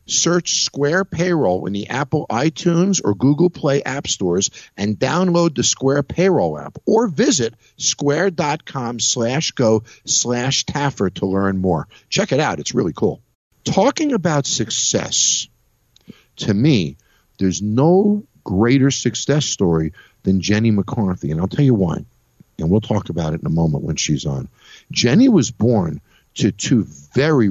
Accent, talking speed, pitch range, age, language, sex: American, 150 wpm, 95-145 Hz, 50-69, English, male